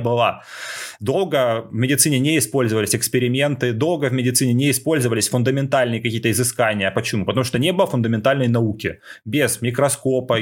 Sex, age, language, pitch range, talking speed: male, 20-39, Russian, 105-130 Hz, 140 wpm